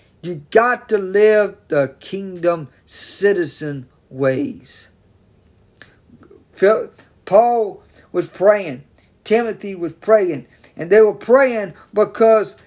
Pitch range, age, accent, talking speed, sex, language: 160-225 Hz, 50-69, American, 90 wpm, male, English